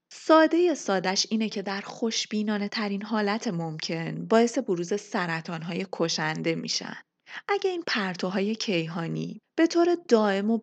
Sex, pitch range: female, 170-245 Hz